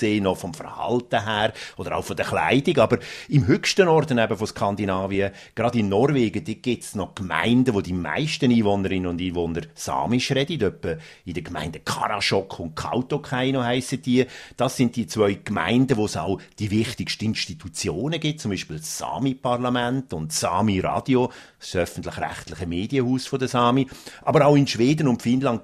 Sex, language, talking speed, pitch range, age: male, German, 165 wpm, 100-130 Hz, 50-69